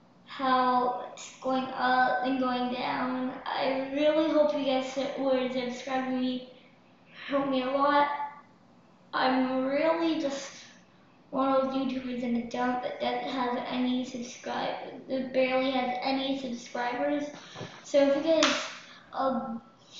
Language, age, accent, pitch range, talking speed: English, 20-39, American, 255-300 Hz, 130 wpm